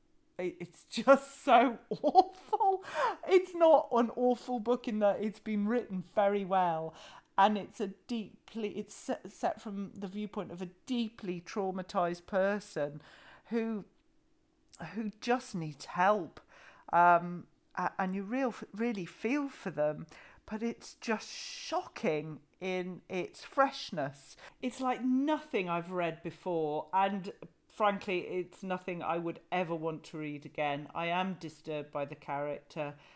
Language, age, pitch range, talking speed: English, 40-59, 160-220 Hz, 130 wpm